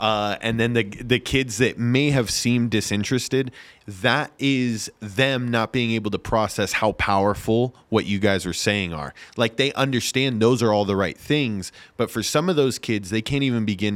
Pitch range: 100-125 Hz